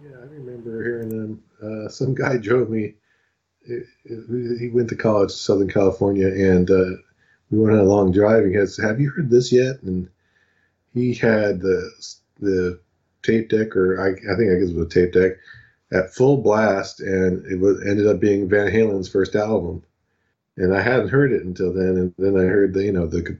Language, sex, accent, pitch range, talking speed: English, male, American, 95-115 Hz, 205 wpm